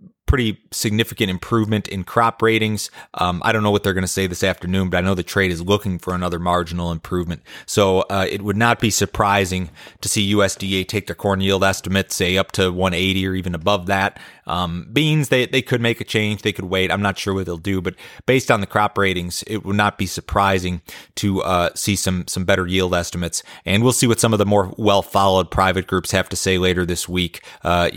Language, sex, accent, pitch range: English, male, American, 90-105 Hz